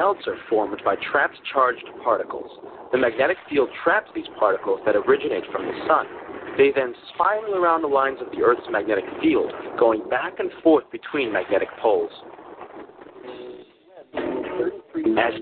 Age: 30-49